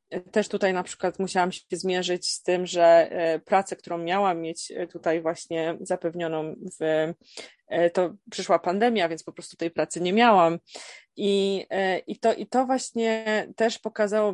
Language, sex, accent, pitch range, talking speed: Polish, female, native, 175-205 Hz, 140 wpm